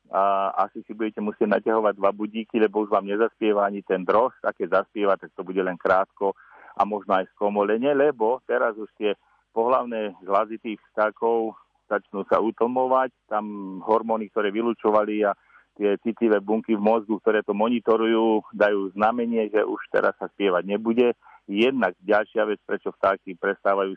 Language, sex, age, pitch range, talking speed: Slovak, male, 40-59, 100-115 Hz, 160 wpm